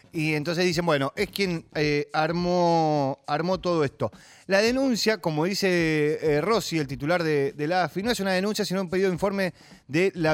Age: 30-49